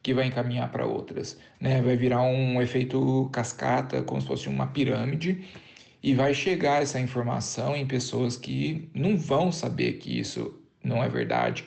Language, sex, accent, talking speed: Portuguese, male, Brazilian, 165 wpm